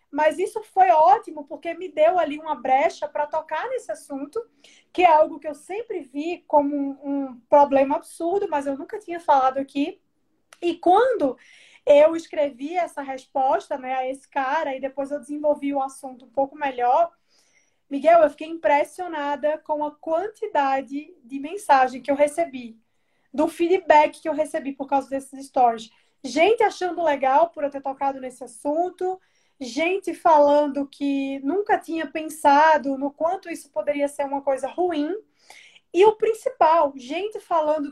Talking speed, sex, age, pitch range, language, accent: 155 wpm, female, 20-39, 275-340 Hz, Portuguese, Brazilian